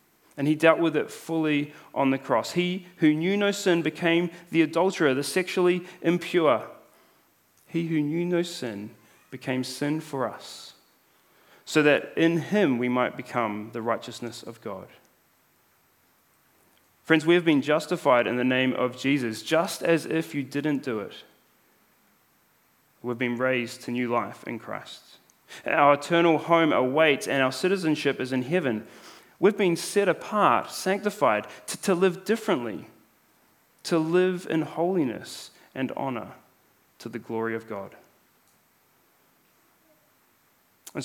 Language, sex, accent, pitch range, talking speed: English, male, Australian, 130-170 Hz, 140 wpm